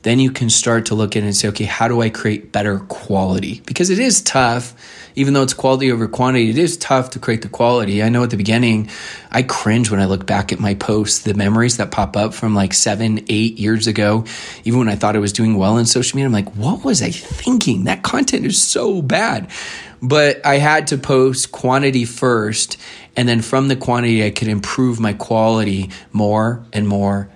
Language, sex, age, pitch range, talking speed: English, male, 20-39, 110-140 Hz, 220 wpm